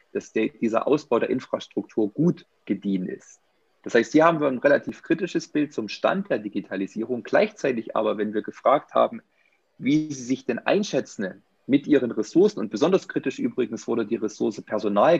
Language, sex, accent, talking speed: German, male, German, 170 wpm